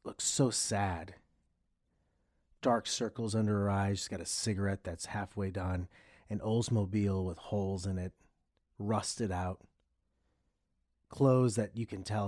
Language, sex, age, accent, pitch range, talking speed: English, male, 30-49, American, 100-120 Hz, 135 wpm